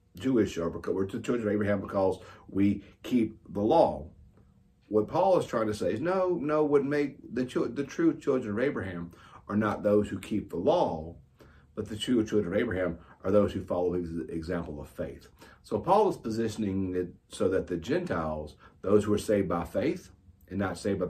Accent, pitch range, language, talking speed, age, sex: American, 85-110 Hz, English, 200 wpm, 50-69, male